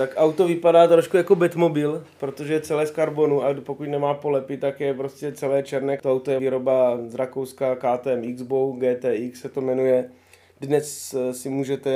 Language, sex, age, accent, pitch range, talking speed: Czech, male, 20-39, native, 115-130 Hz, 175 wpm